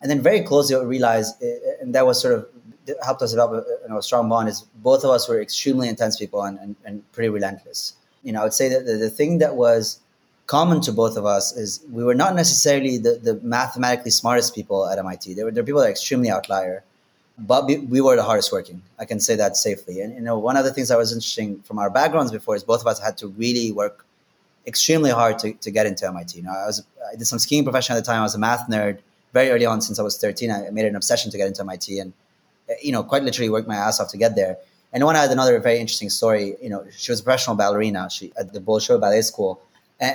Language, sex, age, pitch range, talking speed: English, male, 20-39, 105-135 Hz, 260 wpm